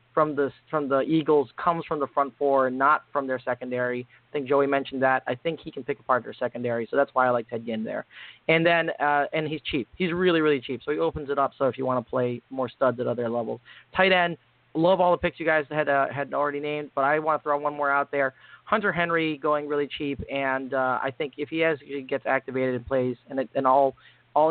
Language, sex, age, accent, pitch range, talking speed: English, male, 30-49, American, 130-155 Hz, 260 wpm